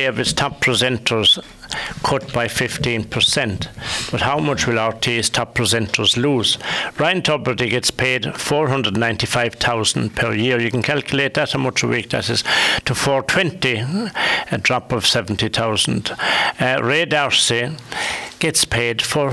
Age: 60-79